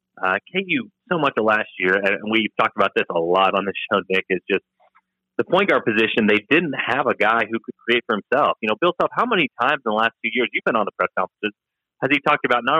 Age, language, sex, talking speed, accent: 30-49, English, male, 265 wpm, American